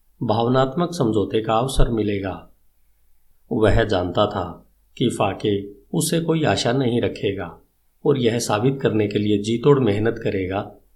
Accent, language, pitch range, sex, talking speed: native, Hindi, 95-130 Hz, male, 130 wpm